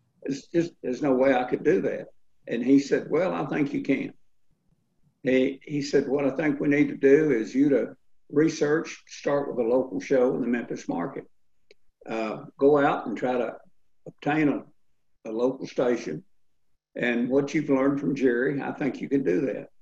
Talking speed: 190 wpm